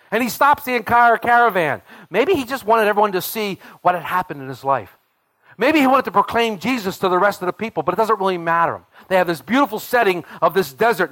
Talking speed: 235 wpm